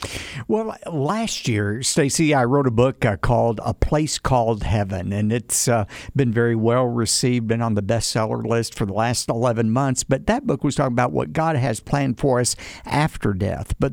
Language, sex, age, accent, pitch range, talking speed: English, male, 60-79, American, 110-145 Hz, 190 wpm